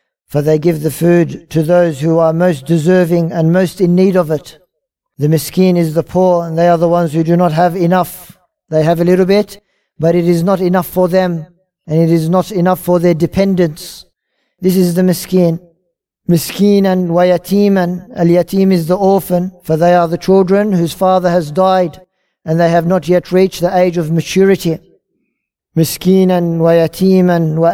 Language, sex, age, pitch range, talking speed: English, male, 50-69, 165-185 Hz, 190 wpm